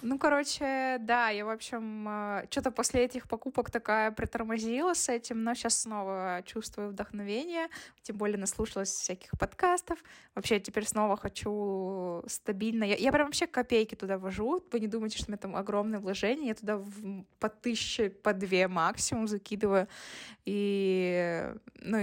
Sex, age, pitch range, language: female, 20-39, 205-250 Hz, Russian